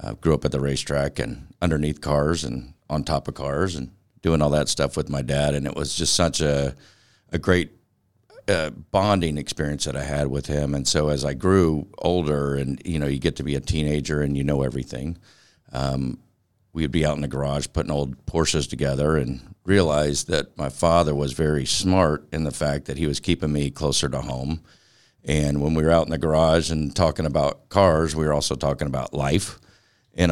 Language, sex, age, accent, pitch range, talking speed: English, male, 50-69, American, 70-85 Hz, 210 wpm